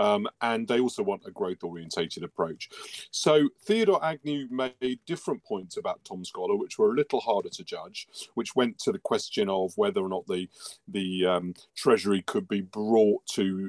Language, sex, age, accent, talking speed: English, male, 40-59, British, 180 wpm